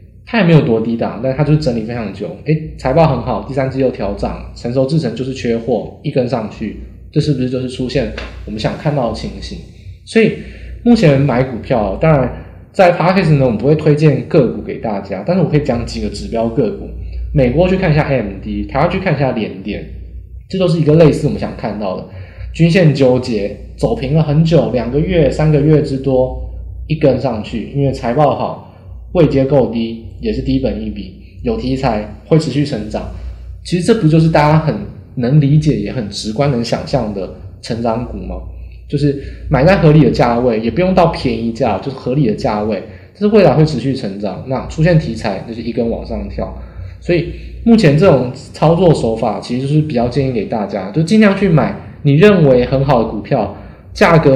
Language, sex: Chinese, male